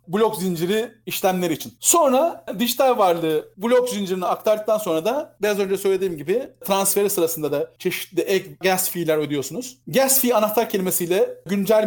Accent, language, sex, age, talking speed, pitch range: native, Turkish, male, 40-59, 145 wpm, 170-210 Hz